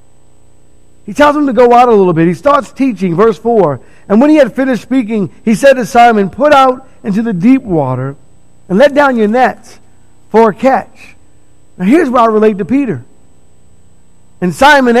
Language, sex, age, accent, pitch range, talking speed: English, male, 50-69, American, 170-235 Hz, 190 wpm